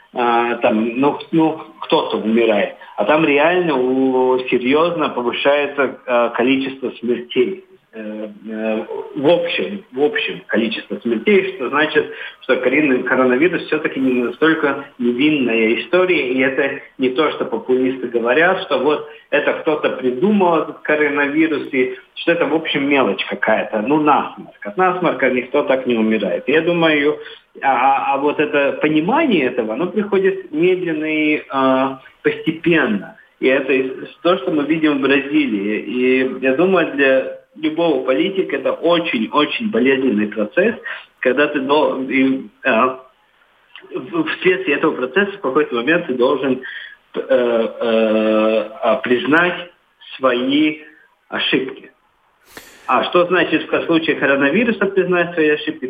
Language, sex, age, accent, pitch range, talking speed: Russian, male, 50-69, native, 130-175 Hz, 120 wpm